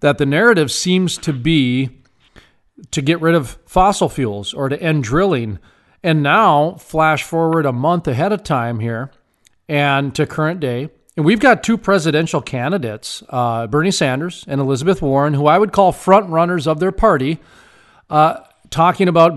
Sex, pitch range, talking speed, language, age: male, 130-165 Hz, 165 wpm, English, 40-59